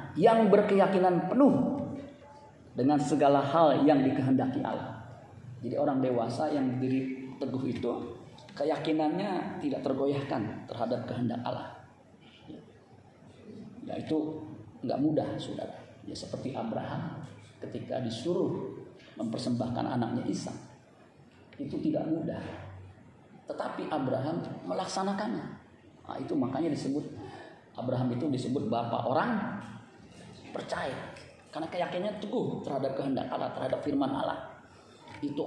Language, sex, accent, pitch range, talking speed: Indonesian, male, native, 120-155 Hz, 105 wpm